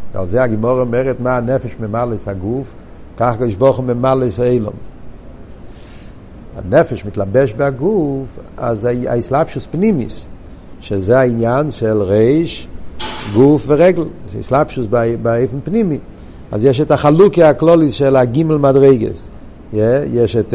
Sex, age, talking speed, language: male, 60-79, 115 wpm, Hebrew